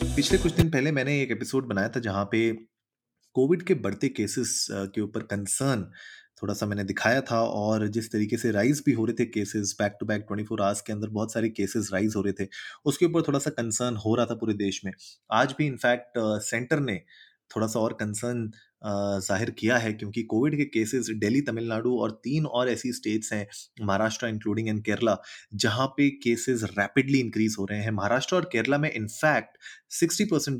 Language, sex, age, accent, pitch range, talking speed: Hindi, male, 30-49, native, 105-125 Hz, 200 wpm